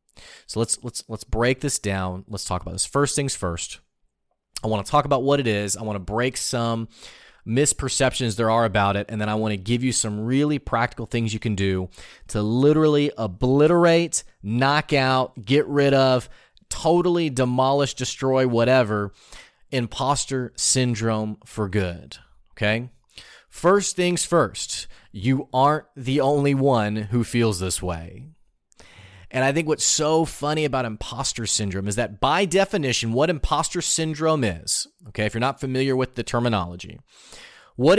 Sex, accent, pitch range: male, American, 105-140 Hz